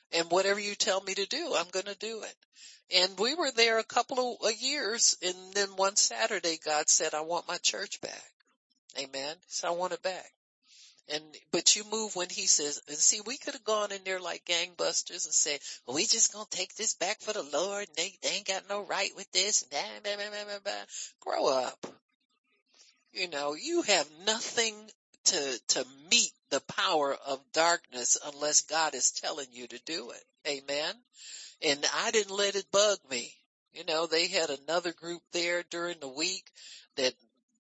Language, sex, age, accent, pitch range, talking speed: English, male, 60-79, American, 155-210 Hz, 185 wpm